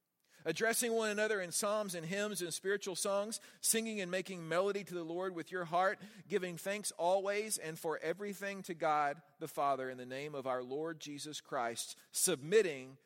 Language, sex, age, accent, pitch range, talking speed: English, male, 40-59, American, 150-190 Hz, 180 wpm